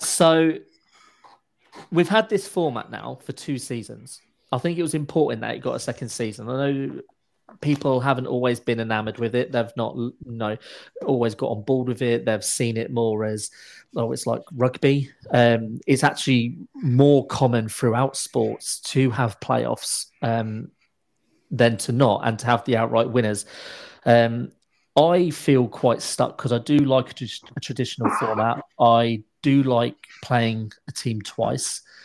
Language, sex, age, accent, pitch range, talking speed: English, male, 30-49, British, 115-135 Hz, 160 wpm